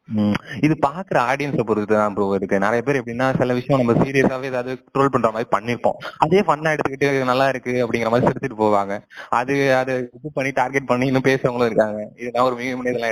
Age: 20-39